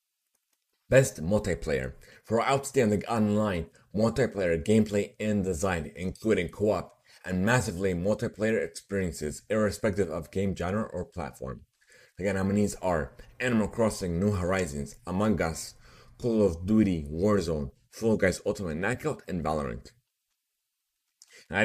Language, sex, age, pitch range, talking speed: English, male, 30-49, 90-110 Hz, 115 wpm